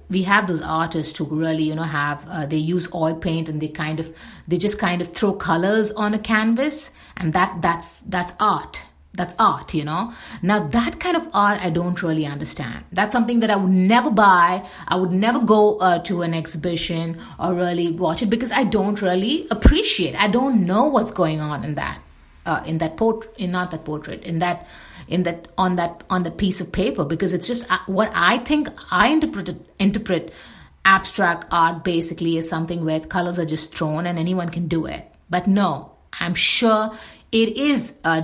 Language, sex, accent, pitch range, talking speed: English, female, Indian, 160-200 Hz, 200 wpm